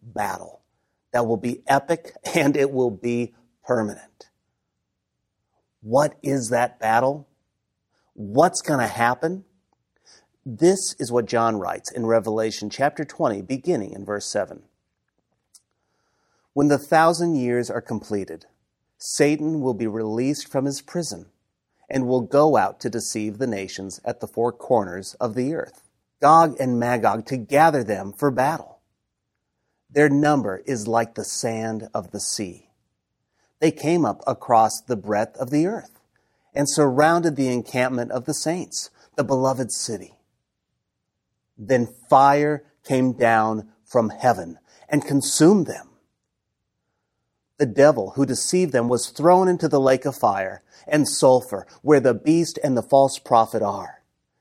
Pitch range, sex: 110-145 Hz, male